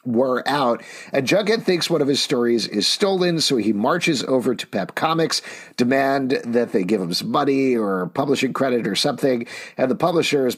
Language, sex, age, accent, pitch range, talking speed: English, male, 50-69, American, 110-145 Hz, 195 wpm